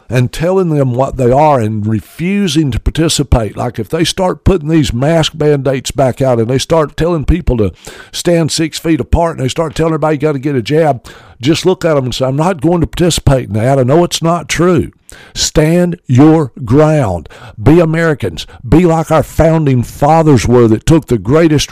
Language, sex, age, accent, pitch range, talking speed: English, male, 60-79, American, 115-155 Hz, 205 wpm